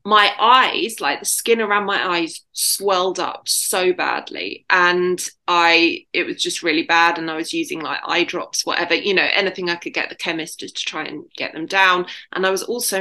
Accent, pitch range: British, 185-230 Hz